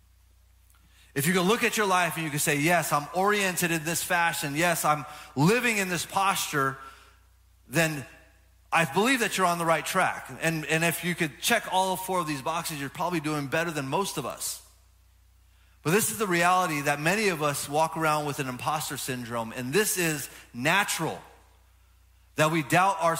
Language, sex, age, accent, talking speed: English, male, 30-49, American, 190 wpm